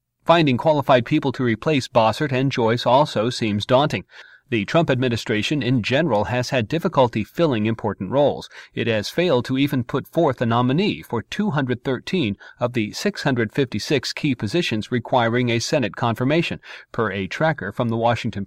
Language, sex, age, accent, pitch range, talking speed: English, male, 40-59, American, 115-155 Hz, 155 wpm